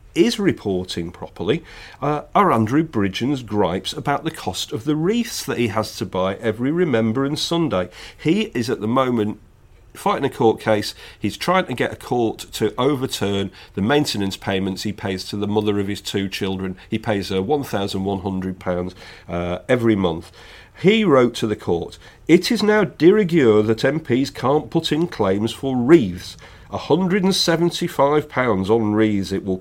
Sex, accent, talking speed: male, British, 165 wpm